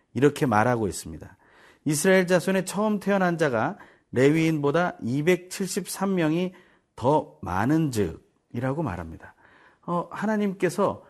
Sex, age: male, 40-59